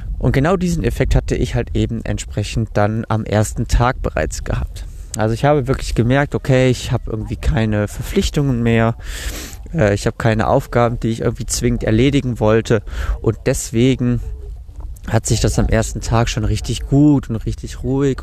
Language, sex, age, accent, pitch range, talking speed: German, male, 20-39, German, 90-130 Hz, 170 wpm